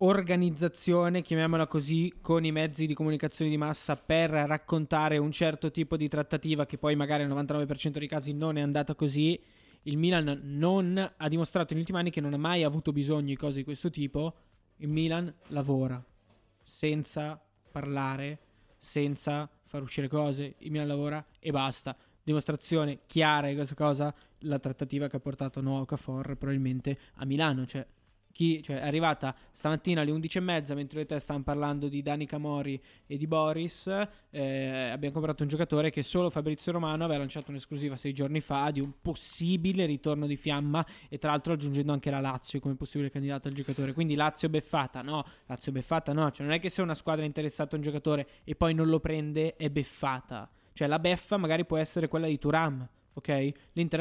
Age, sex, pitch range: 20-39, male, 140-160 Hz